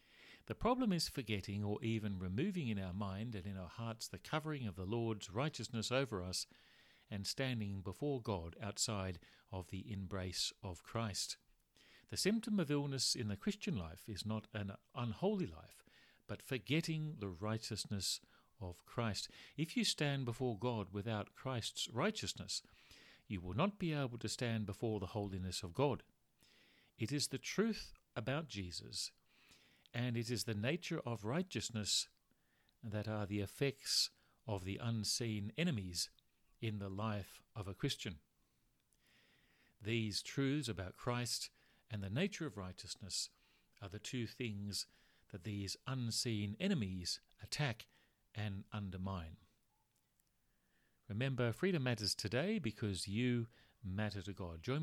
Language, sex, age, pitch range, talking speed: English, male, 50-69, 100-125 Hz, 140 wpm